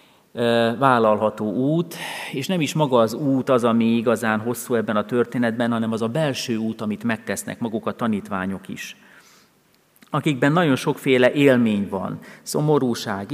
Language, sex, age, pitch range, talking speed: Hungarian, male, 40-59, 110-130 Hz, 145 wpm